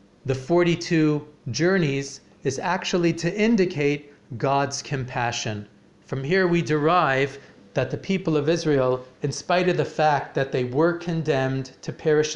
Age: 40-59